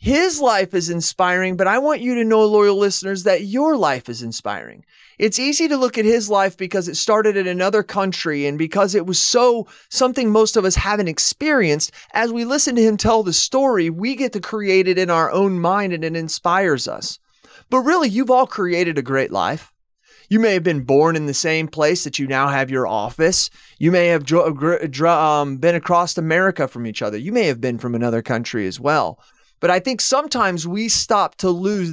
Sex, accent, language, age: male, American, English, 30-49